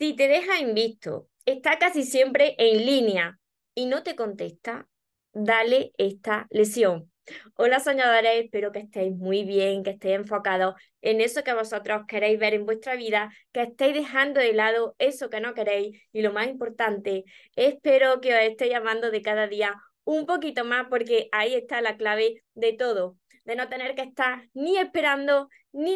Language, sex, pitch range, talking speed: Spanish, female, 215-265 Hz, 170 wpm